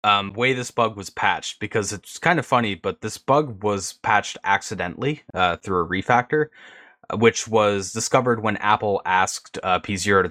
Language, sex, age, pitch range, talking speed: English, male, 20-39, 95-125 Hz, 175 wpm